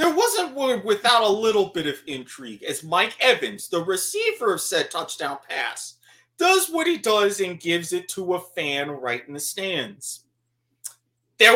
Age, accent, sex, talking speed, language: 30-49, American, male, 170 wpm, English